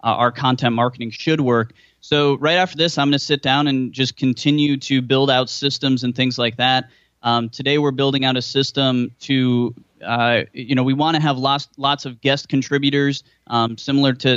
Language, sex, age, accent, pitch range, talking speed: English, male, 20-39, American, 125-145 Hz, 205 wpm